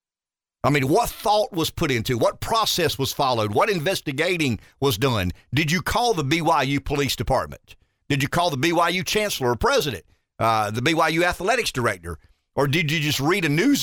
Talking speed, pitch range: 180 wpm, 125-170 Hz